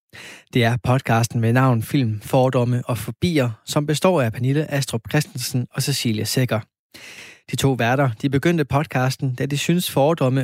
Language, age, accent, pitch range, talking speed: Danish, 20-39, native, 120-150 Hz, 160 wpm